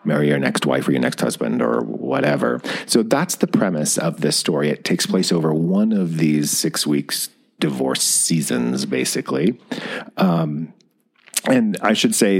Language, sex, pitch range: English, male, 80-110 Hz